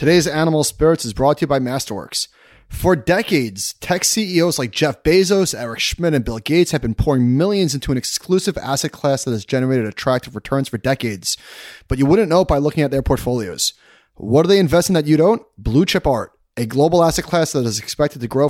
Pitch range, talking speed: 130-170 Hz, 215 wpm